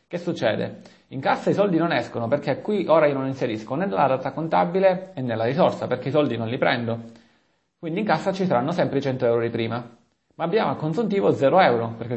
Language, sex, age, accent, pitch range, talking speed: Italian, male, 30-49, native, 120-160 Hz, 220 wpm